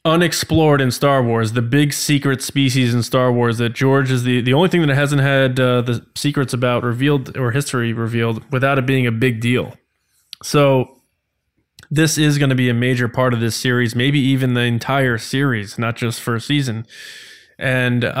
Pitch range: 115-140 Hz